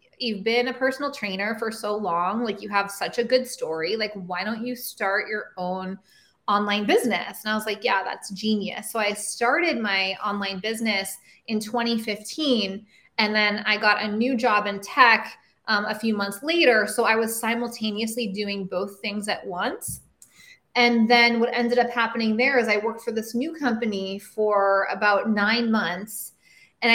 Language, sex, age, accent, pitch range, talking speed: English, female, 20-39, American, 205-240 Hz, 180 wpm